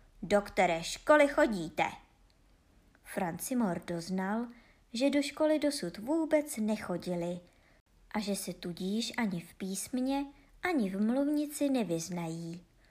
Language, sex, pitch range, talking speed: Czech, male, 175-260 Hz, 105 wpm